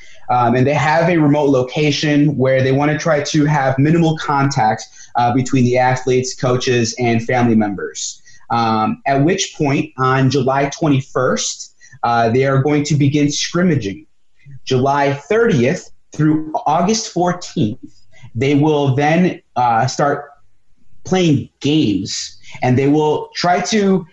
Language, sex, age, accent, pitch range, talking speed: English, male, 30-49, American, 130-175 Hz, 135 wpm